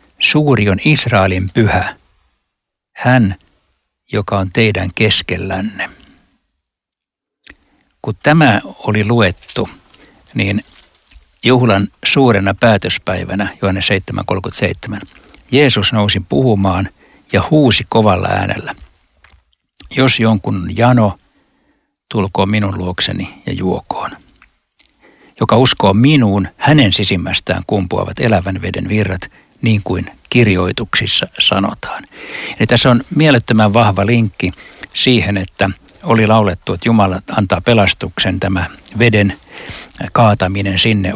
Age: 60-79